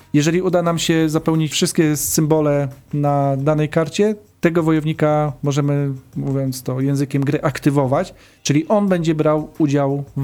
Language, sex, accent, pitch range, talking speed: Polish, male, native, 150-185 Hz, 140 wpm